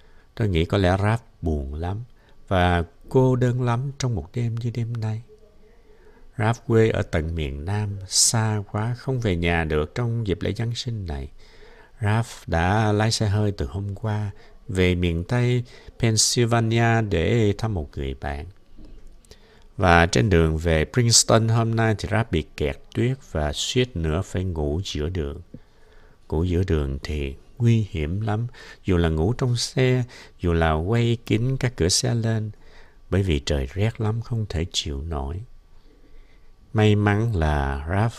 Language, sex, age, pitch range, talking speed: Vietnamese, male, 60-79, 80-115 Hz, 165 wpm